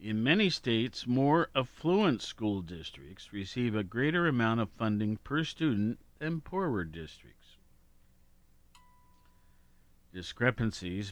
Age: 50-69